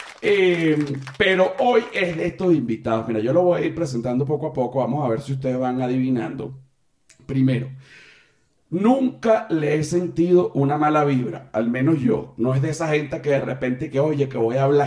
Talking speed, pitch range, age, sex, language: 200 wpm, 130-160 Hz, 40-59, male, Spanish